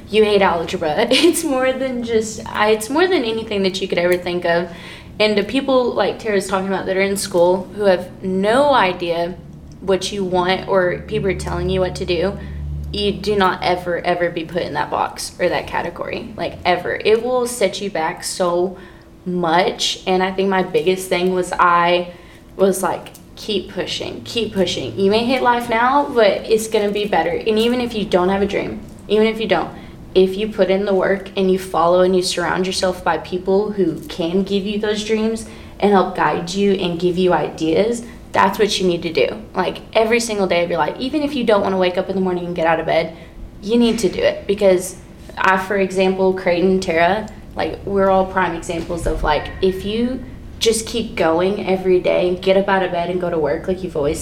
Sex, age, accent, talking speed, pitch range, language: female, 20-39, American, 220 wpm, 180-210 Hz, English